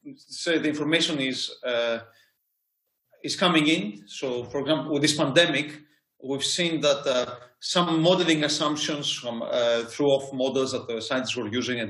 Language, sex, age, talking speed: English, male, 30-49, 155 wpm